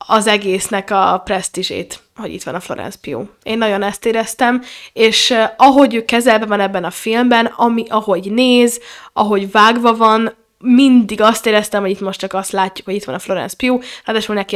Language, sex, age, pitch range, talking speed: Hungarian, female, 20-39, 210-250 Hz, 185 wpm